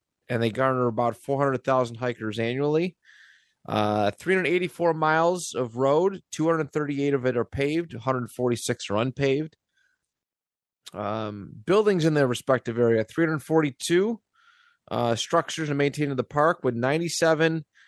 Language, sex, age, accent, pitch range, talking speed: English, male, 30-49, American, 115-155 Hz, 120 wpm